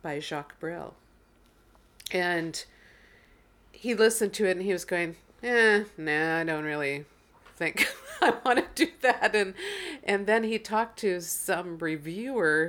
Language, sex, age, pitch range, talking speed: English, female, 50-69, 155-210 Hz, 145 wpm